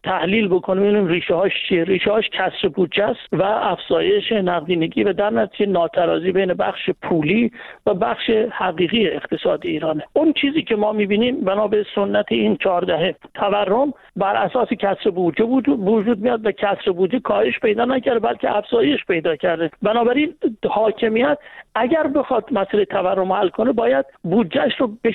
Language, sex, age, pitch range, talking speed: Persian, male, 50-69, 195-245 Hz, 155 wpm